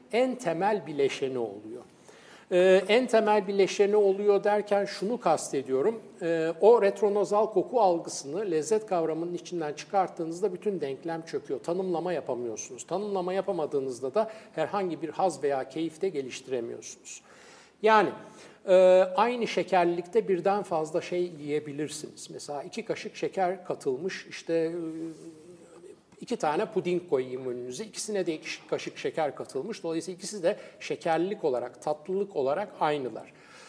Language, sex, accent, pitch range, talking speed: Turkish, male, native, 160-205 Hz, 125 wpm